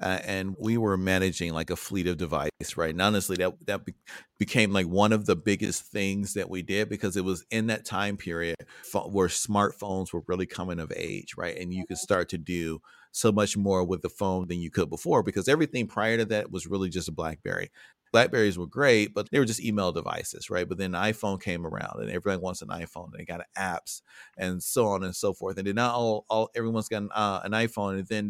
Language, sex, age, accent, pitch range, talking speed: English, male, 40-59, American, 90-105 Hz, 235 wpm